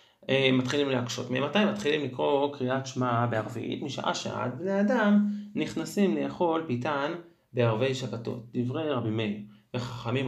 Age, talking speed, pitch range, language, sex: 30-49, 130 wpm, 120-185 Hz, Hebrew, male